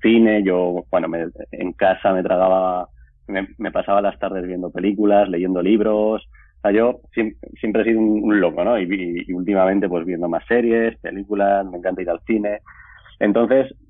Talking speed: 185 wpm